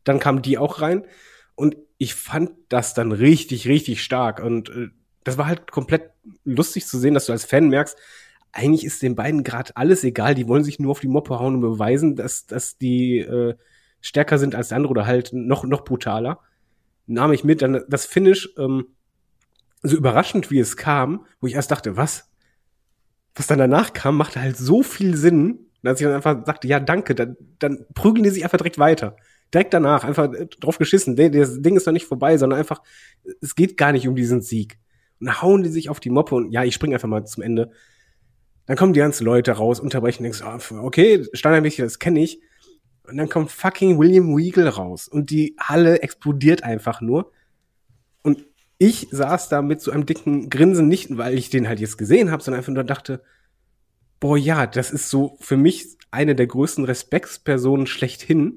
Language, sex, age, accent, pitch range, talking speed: German, male, 30-49, German, 125-155 Hz, 200 wpm